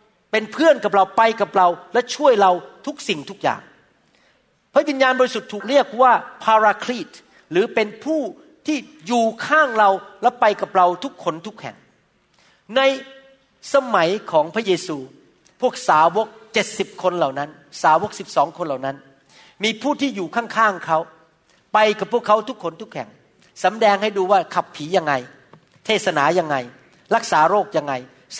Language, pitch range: Thai, 180-230 Hz